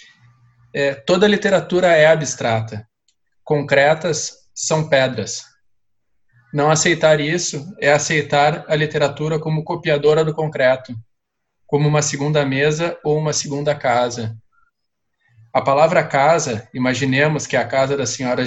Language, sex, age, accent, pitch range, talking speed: Portuguese, male, 20-39, Brazilian, 125-155 Hz, 115 wpm